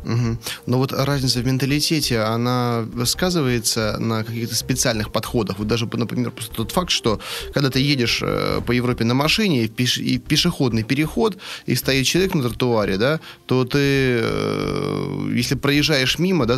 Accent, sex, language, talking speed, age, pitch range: native, male, Russian, 165 wpm, 20-39, 110-140 Hz